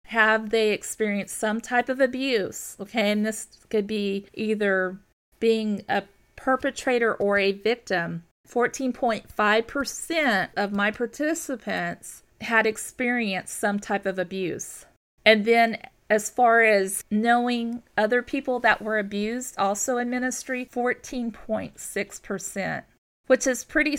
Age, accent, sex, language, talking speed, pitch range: 40-59, American, female, English, 120 wpm, 205-245 Hz